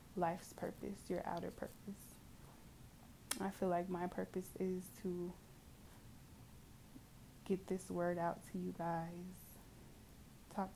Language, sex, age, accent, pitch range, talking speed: English, female, 20-39, American, 175-190 Hz, 110 wpm